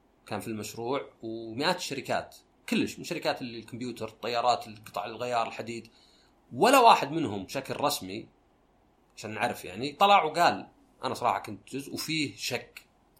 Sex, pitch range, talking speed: male, 115-165 Hz, 130 wpm